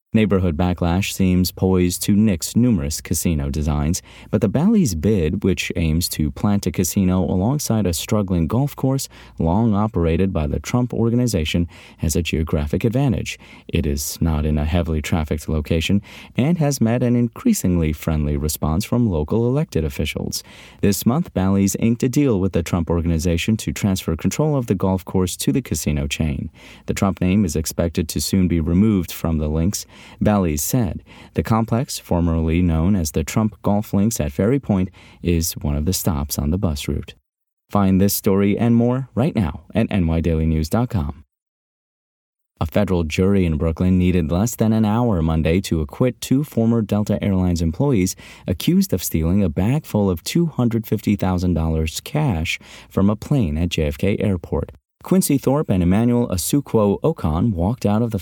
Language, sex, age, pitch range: English, male, 30-49, 85-110 Hz